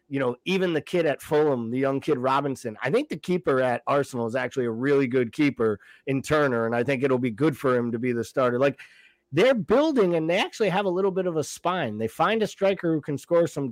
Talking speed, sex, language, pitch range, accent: 255 wpm, male, English, 130-185 Hz, American